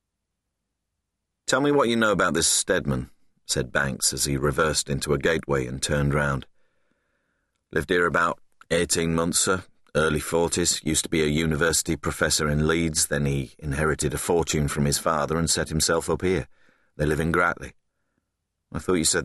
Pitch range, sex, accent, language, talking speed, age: 70-85 Hz, male, British, English, 175 wpm, 40-59